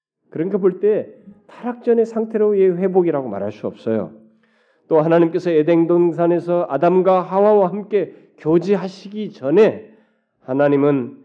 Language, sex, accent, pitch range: Korean, male, native, 145-210 Hz